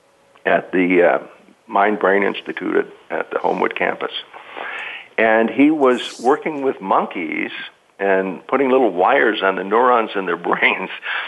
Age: 60-79